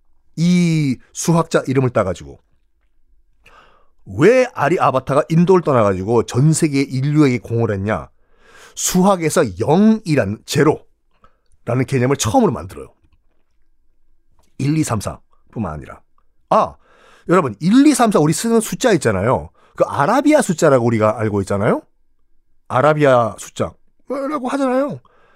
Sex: male